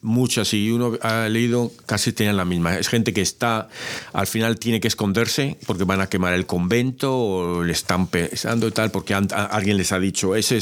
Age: 40-59